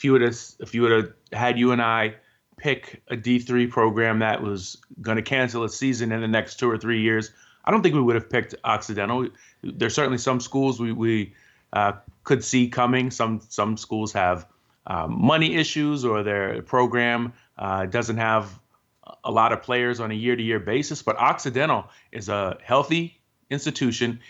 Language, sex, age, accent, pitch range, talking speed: English, male, 30-49, American, 110-130 Hz, 185 wpm